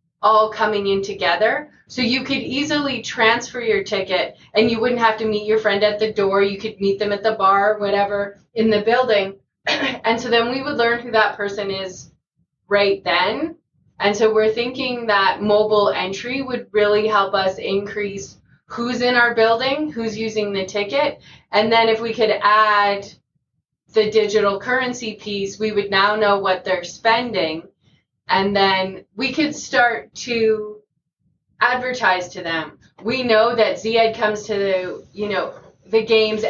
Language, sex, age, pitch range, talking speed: English, female, 20-39, 200-235 Hz, 170 wpm